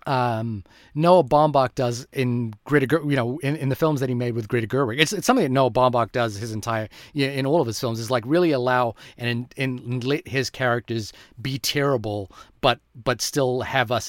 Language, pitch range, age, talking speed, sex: English, 120-155 Hz, 30-49, 215 wpm, male